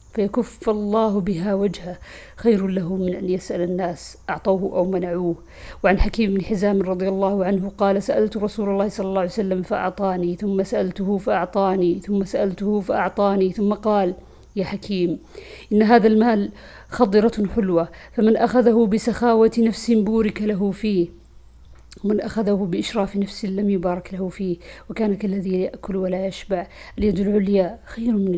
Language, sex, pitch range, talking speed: Arabic, female, 195-220 Hz, 140 wpm